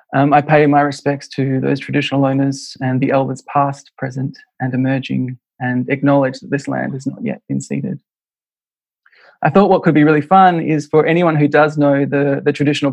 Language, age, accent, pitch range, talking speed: English, 20-39, Australian, 135-155 Hz, 195 wpm